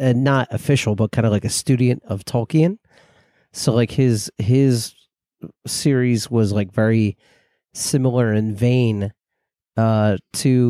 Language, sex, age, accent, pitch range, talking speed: English, male, 30-49, American, 110-125 Hz, 135 wpm